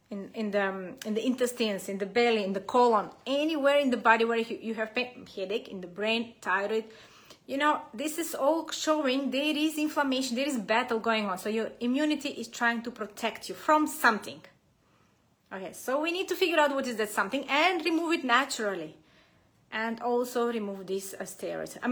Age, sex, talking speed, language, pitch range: 30-49, female, 195 wpm, English, 210-260 Hz